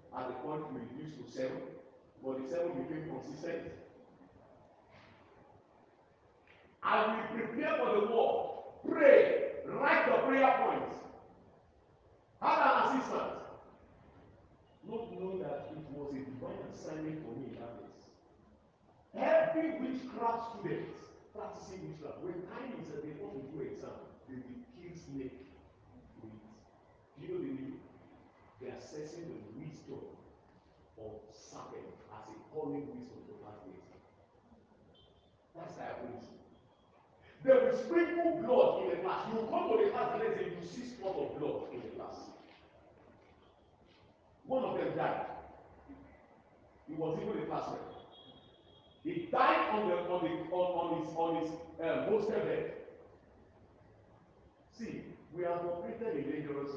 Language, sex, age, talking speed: English, male, 50-69, 135 wpm